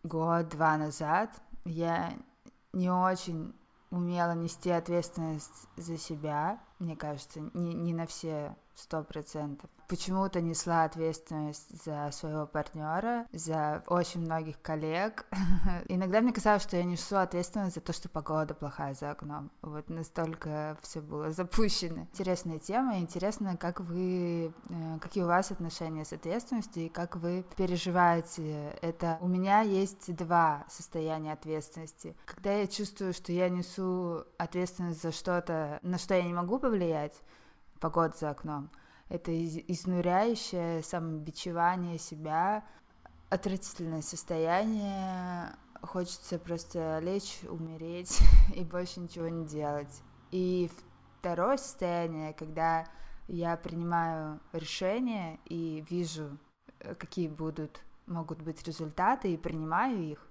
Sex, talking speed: female, 120 wpm